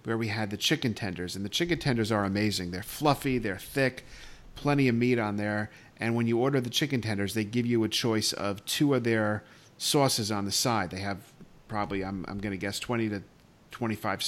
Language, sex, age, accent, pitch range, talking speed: English, male, 40-59, American, 100-125 Hz, 220 wpm